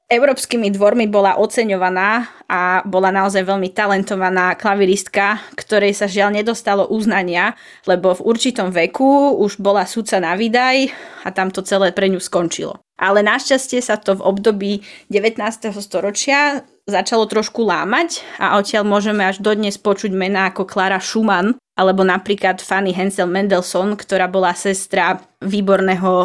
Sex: female